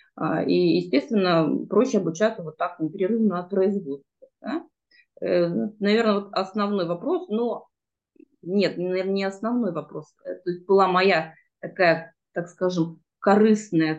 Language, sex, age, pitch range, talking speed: Russian, female, 20-39, 170-205 Hz, 115 wpm